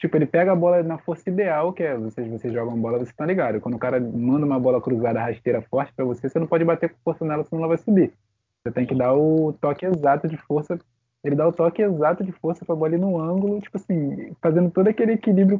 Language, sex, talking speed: Portuguese, male, 255 wpm